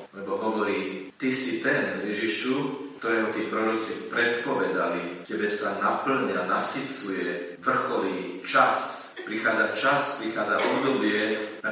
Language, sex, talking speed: Slovak, male, 110 wpm